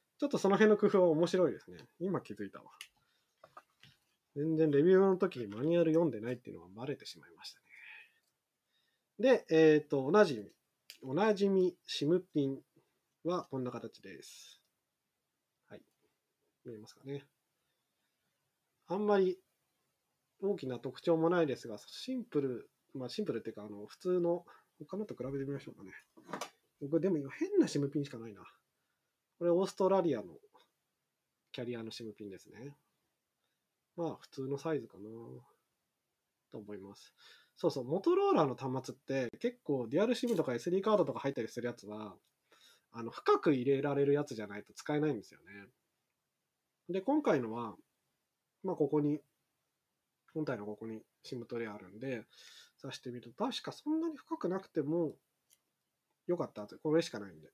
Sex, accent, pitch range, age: male, native, 120-185 Hz, 20-39